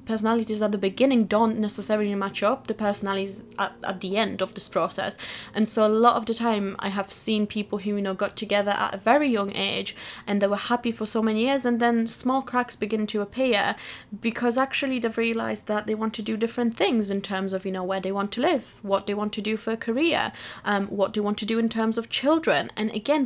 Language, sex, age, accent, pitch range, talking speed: English, female, 20-39, British, 200-230 Hz, 245 wpm